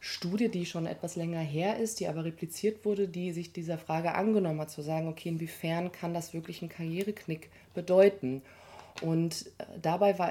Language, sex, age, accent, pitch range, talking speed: German, female, 30-49, German, 150-180 Hz, 170 wpm